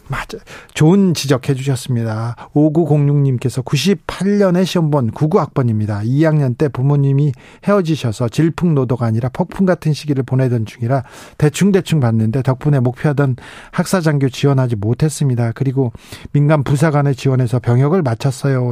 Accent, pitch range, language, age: native, 125-165 Hz, Korean, 40-59